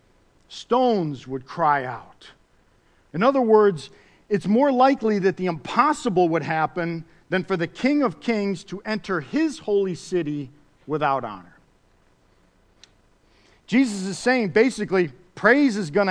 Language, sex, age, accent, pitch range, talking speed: English, male, 50-69, American, 160-220 Hz, 130 wpm